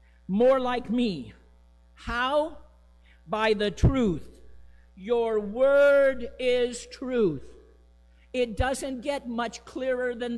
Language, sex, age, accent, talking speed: English, male, 50-69, American, 100 wpm